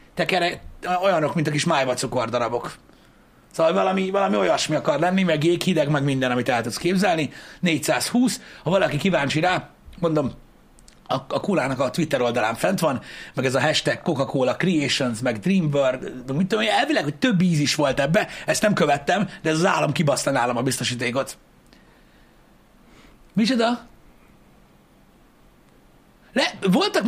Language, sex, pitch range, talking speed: Hungarian, male, 135-185 Hz, 150 wpm